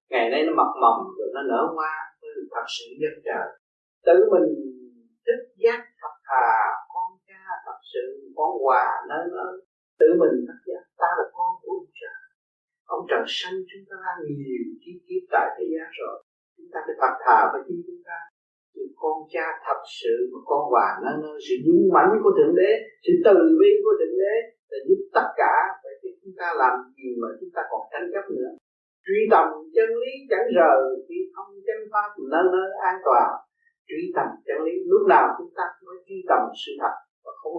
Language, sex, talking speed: Vietnamese, male, 200 wpm